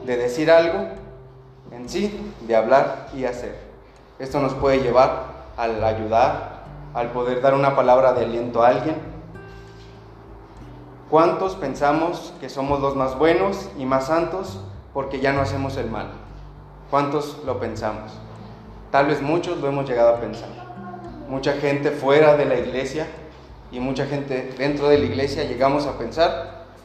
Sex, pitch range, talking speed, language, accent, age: male, 110-145 Hz, 150 wpm, Spanish, Mexican, 30-49